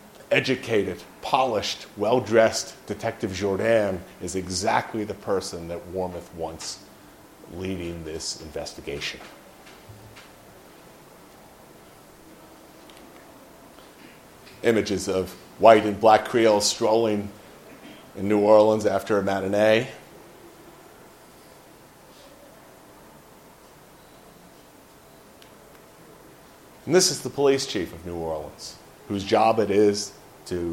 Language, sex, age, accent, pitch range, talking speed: English, male, 40-59, American, 95-110 Hz, 80 wpm